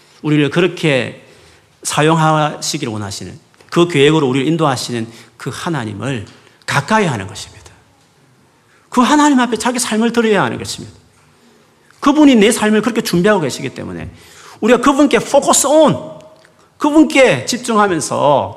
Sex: male